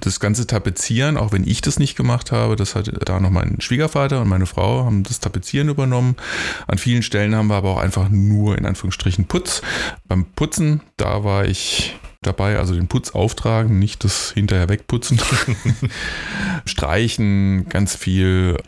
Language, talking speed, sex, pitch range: German, 165 wpm, male, 95-115 Hz